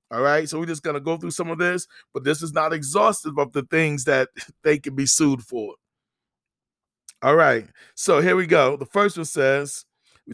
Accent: American